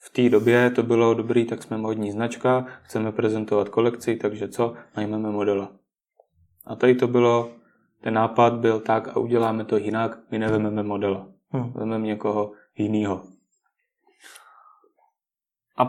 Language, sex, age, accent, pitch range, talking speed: Czech, male, 20-39, native, 110-135 Hz, 135 wpm